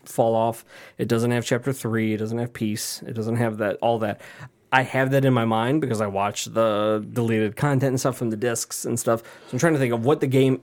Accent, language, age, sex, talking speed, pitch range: American, English, 20-39, male, 255 wpm, 115-135 Hz